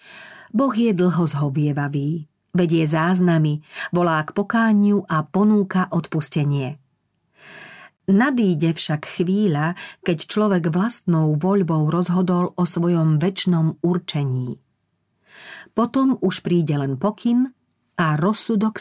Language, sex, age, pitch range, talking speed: Slovak, female, 40-59, 155-200 Hz, 100 wpm